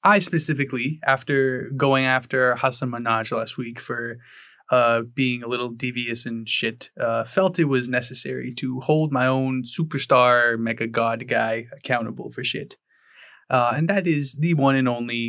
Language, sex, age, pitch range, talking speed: English, male, 20-39, 120-135 Hz, 160 wpm